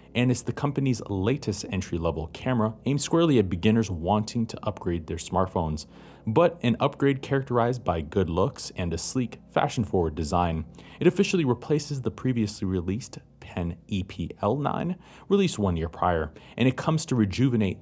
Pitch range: 90-130 Hz